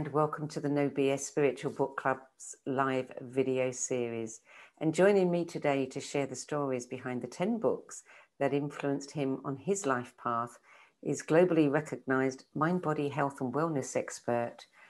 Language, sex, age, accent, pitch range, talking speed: English, female, 50-69, British, 130-155 Hz, 155 wpm